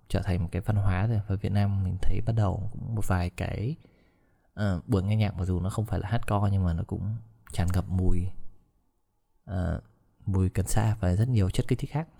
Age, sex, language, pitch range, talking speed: 20-39, male, Vietnamese, 95-115 Hz, 225 wpm